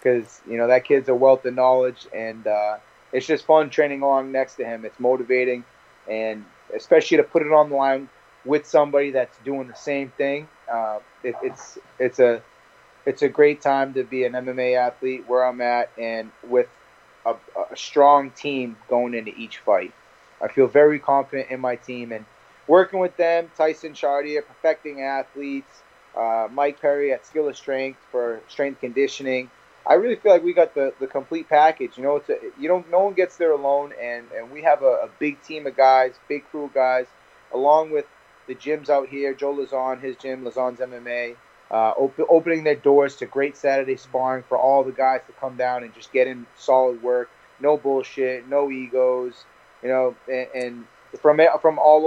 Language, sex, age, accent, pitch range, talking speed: English, male, 30-49, American, 125-145 Hz, 195 wpm